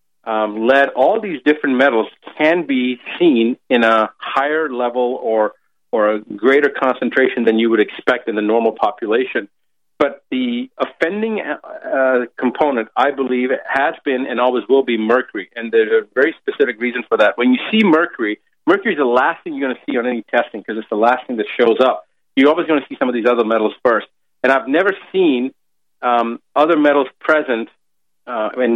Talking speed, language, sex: 195 wpm, English, male